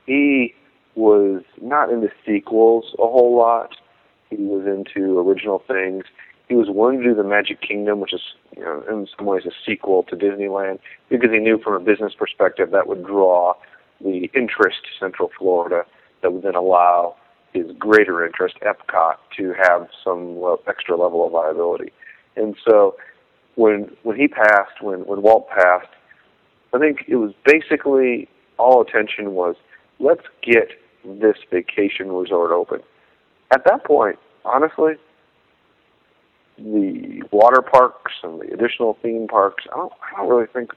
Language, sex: English, male